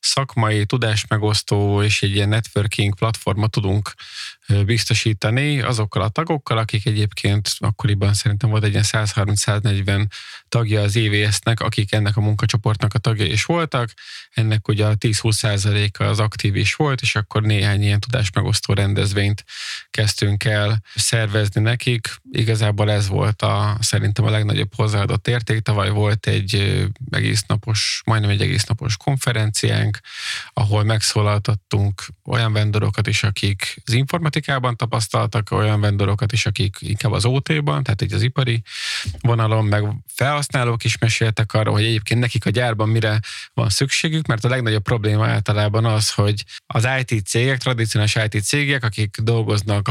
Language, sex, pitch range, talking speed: Hungarian, male, 105-120 Hz, 135 wpm